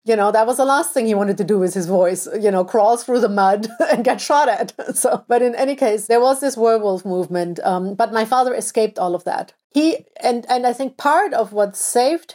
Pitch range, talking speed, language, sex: 220-260 Hz, 250 wpm, English, female